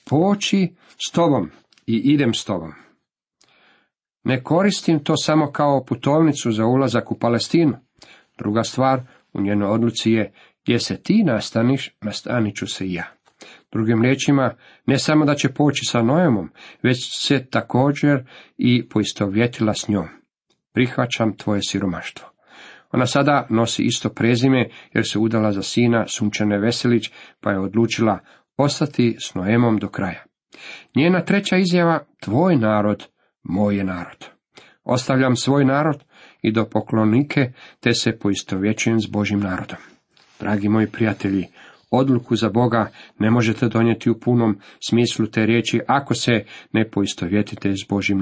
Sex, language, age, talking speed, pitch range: male, Croatian, 50-69, 135 wpm, 105-130 Hz